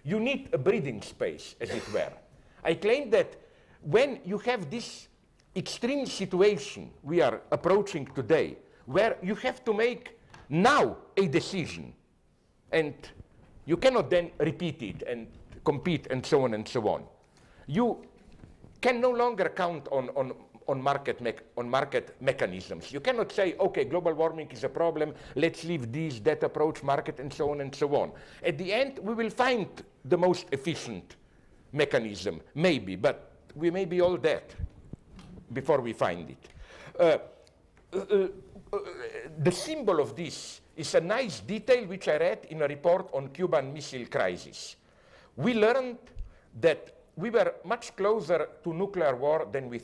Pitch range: 155-240 Hz